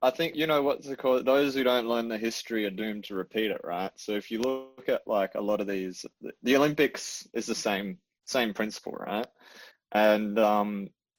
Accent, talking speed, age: Australian, 210 wpm, 20-39